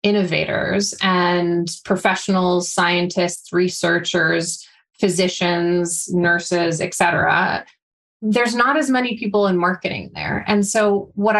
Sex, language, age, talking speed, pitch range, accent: female, English, 20-39, 105 wpm, 180-210 Hz, American